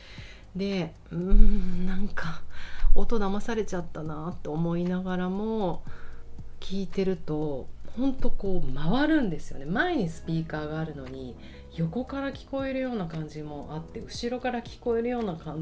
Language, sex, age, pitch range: Japanese, female, 40-59, 140-200 Hz